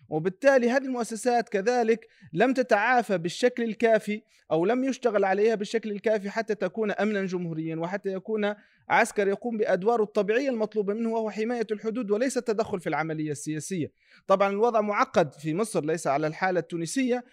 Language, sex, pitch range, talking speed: Arabic, male, 180-230 Hz, 150 wpm